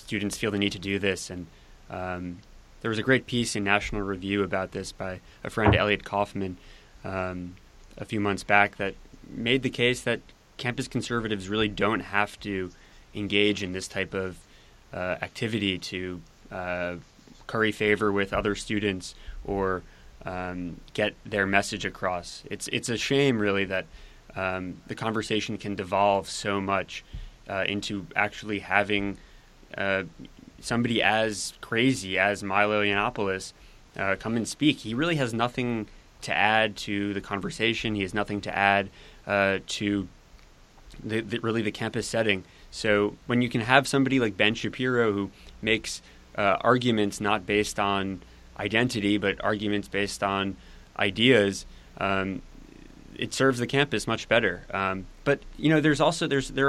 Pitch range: 95-110 Hz